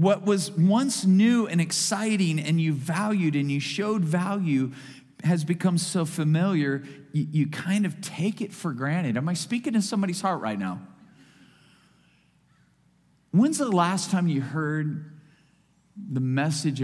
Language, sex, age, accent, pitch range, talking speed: English, male, 40-59, American, 135-190 Hz, 145 wpm